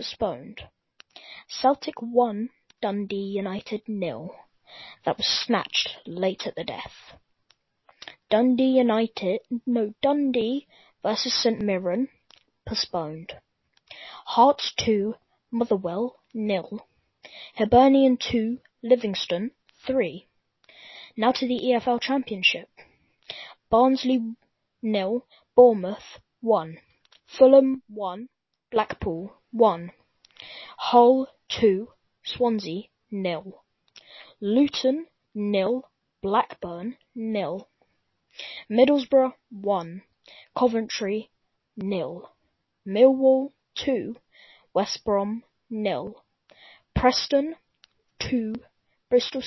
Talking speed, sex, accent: 75 wpm, female, British